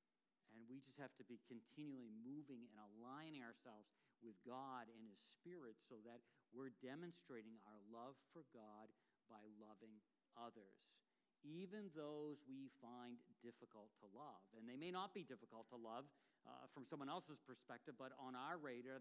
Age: 50-69